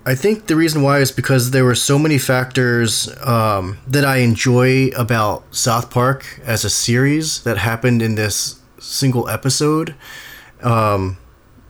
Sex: male